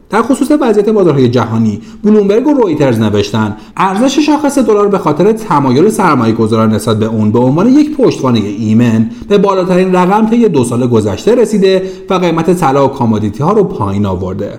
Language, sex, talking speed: Persian, male, 165 wpm